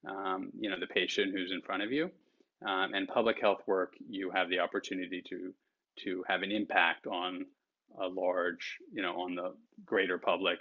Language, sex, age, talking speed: Vietnamese, male, 30-49, 185 wpm